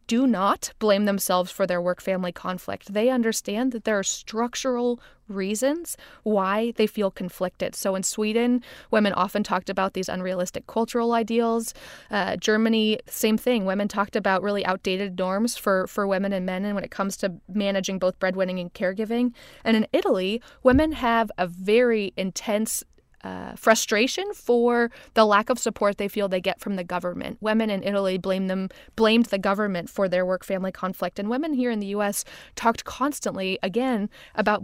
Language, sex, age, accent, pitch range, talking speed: English, female, 20-39, American, 190-230 Hz, 170 wpm